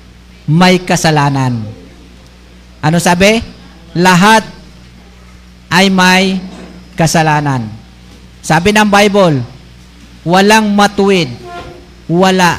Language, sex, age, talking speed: Filipino, male, 50-69, 65 wpm